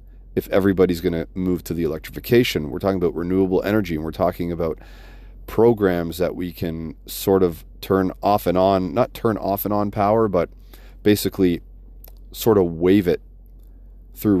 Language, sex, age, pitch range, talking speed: English, male, 30-49, 85-105 Hz, 165 wpm